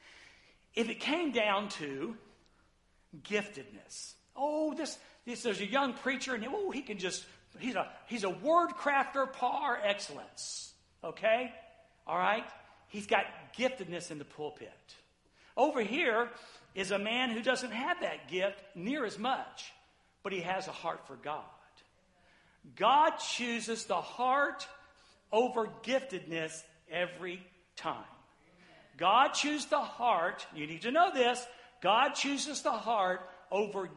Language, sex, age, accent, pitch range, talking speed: English, male, 60-79, American, 185-255 Hz, 135 wpm